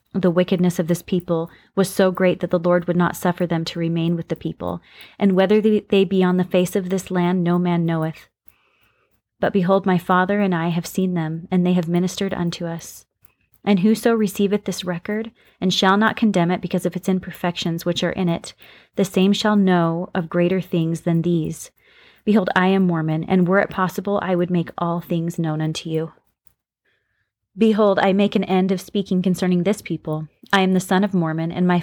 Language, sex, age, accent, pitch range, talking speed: English, female, 30-49, American, 170-195 Hz, 205 wpm